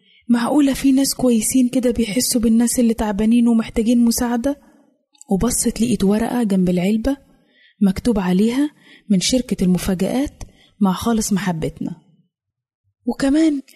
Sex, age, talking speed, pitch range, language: female, 20-39, 110 wpm, 200-255 Hz, Arabic